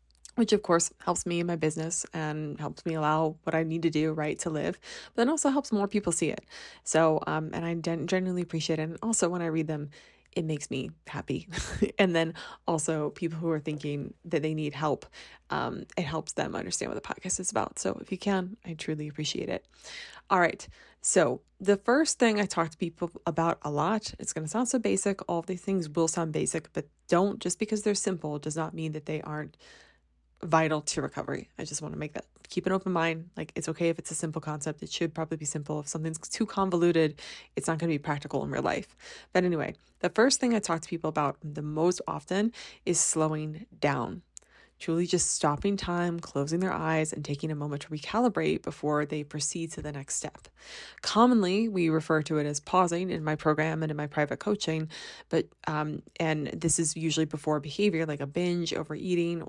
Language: English